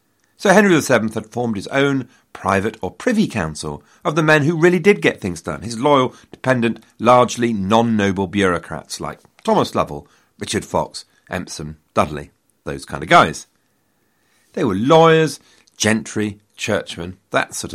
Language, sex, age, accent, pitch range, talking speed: English, male, 40-59, British, 95-145 Hz, 150 wpm